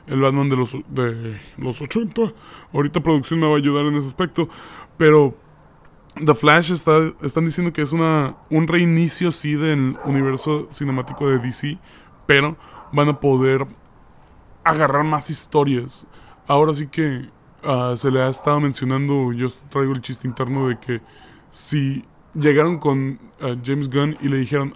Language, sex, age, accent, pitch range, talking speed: Spanish, male, 20-39, Mexican, 130-155 Hz, 160 wpm